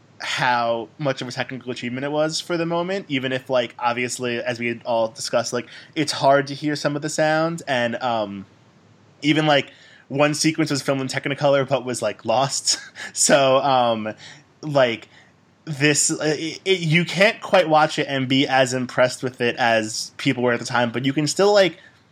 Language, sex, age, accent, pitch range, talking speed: English, male, 20-39, American, 125-160 Hz, 185 wpm